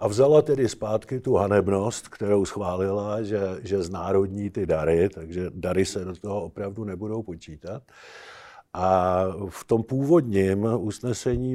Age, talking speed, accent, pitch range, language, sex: 50-69, 135 wpm, native, 100-135 Hz, Czech, male